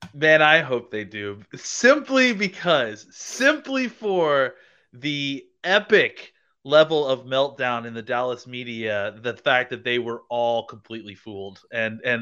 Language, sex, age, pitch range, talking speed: English, male, 30-49, 110-135 Hz, 135 wpm